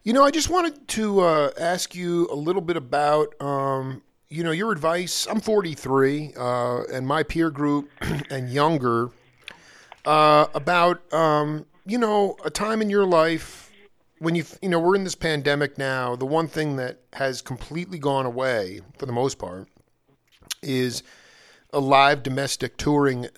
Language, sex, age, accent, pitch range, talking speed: English, male, 40-59, American, 125-165 Hz, 160 wpm